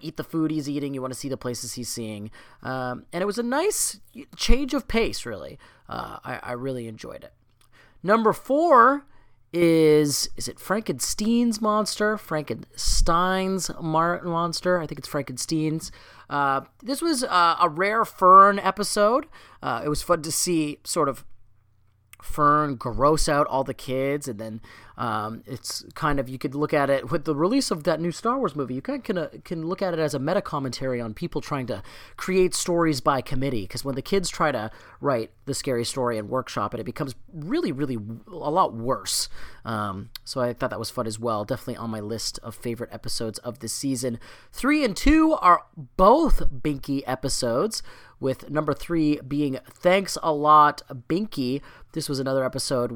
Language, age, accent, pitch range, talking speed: English, 30-49, American, 125-175 Hz, 185 wpm